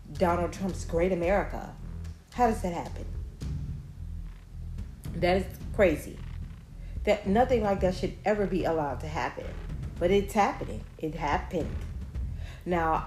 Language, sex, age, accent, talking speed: English, female, 40-59, American, 125 wpm